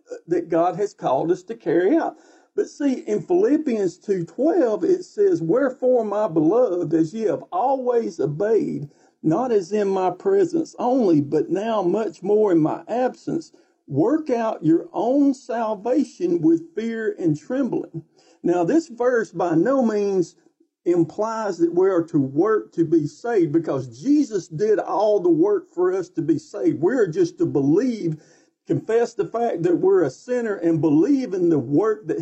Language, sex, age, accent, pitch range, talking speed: English, male, 50-69, American, 210-345 Hz, 165 wpm